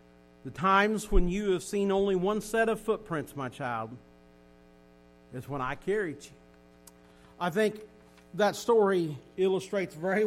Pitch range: 205-320 Hz